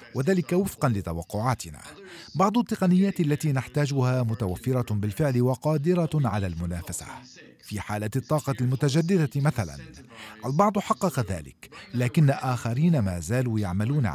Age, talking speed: 40-59, 105 wpm